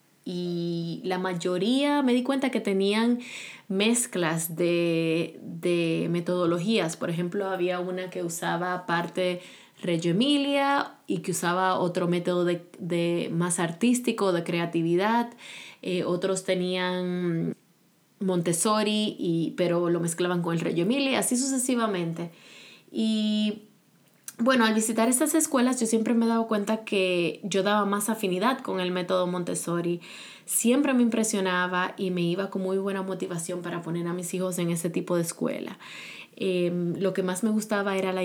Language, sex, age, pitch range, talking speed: Spanish, female, 20-39, 175-210 Hz, 145 wpm